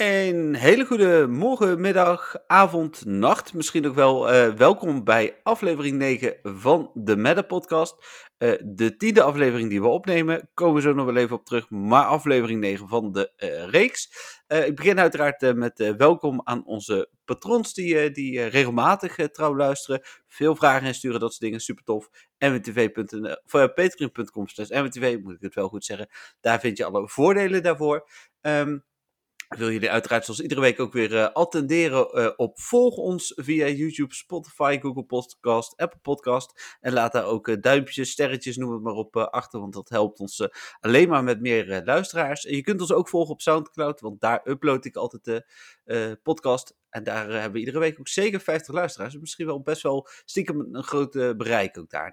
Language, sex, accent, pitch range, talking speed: Dutch, male, Dutch, 120-165 Hz, 190 wpm